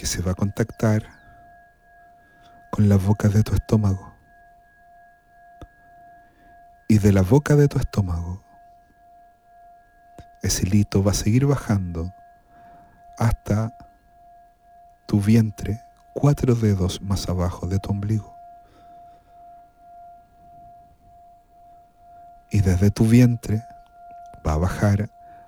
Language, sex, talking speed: Spanish, male, 95 wpm